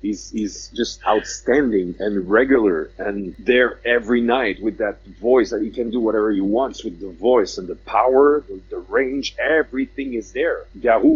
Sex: male